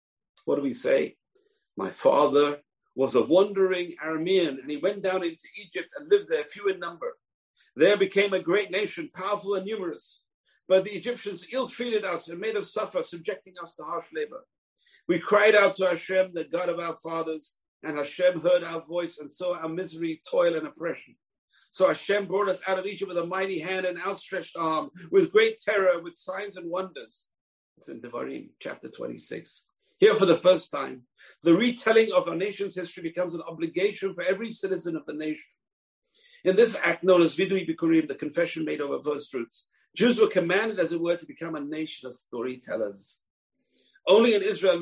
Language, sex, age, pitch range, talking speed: English, male, 50-69, 170-235 Hz, 185 wpm